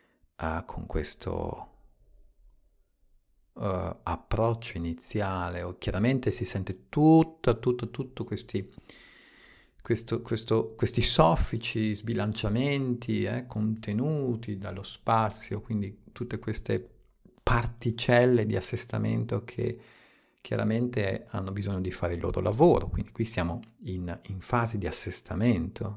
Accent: native